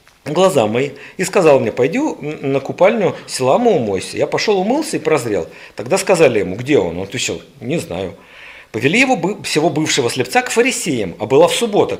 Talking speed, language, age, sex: 175 wpm, Russian, 50-69, male